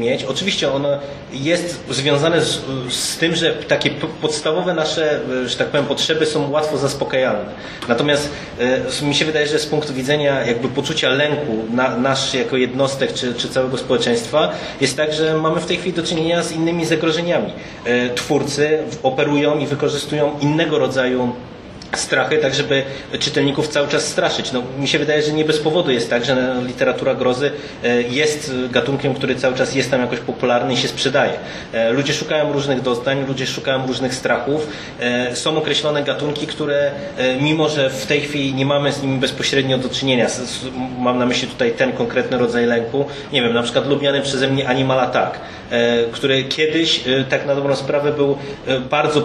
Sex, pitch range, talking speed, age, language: male, 130-150 Hz, 170 wpm, 20-39, Polish